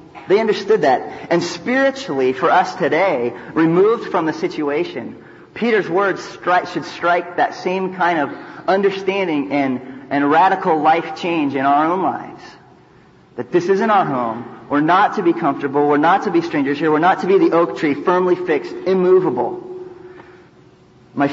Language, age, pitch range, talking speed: English, 30-49, 135-190 Hz, 165 wpm